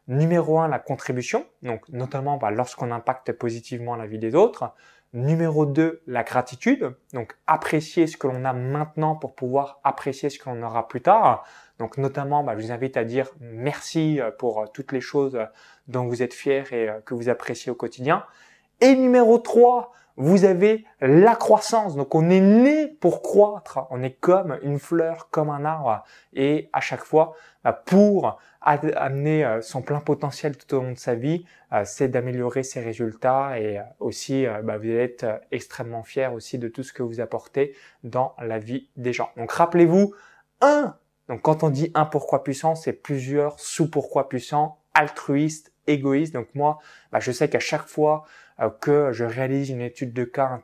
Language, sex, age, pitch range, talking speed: French, male, 20-39, 125-160 Hz, 175 wpm